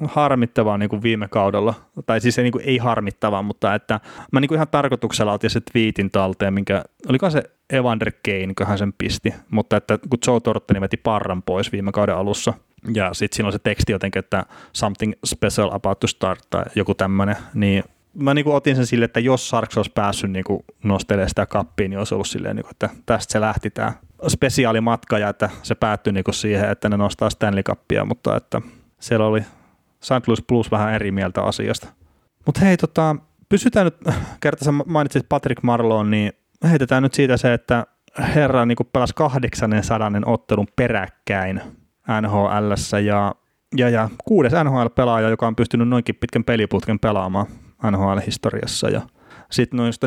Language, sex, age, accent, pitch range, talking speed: Finnish, male, 20-39, native, 100-120 Hz, 175 wpm